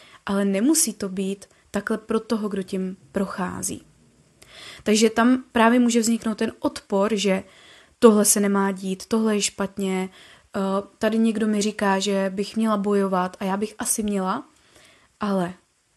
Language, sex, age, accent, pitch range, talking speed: Czech, female, 20-39, native, 195-230 Hz, 145 wpm